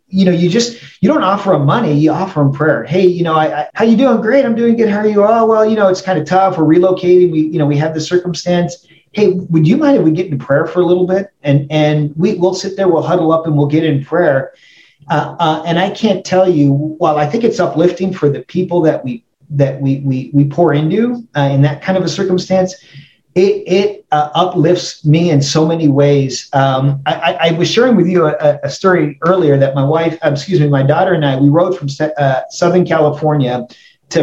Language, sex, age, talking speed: English, male, 40-59, 245 wpm